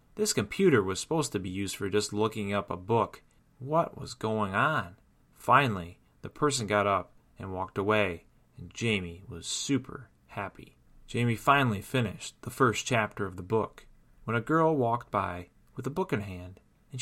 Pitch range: 100-125 Hz